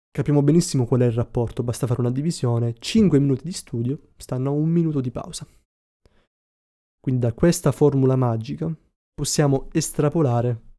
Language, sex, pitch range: Italian, male, 120-145 Hz